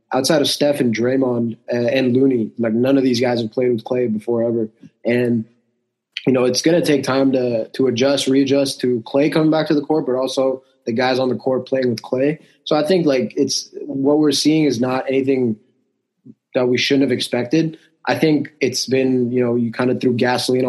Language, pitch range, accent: English, 120-135 Hz, American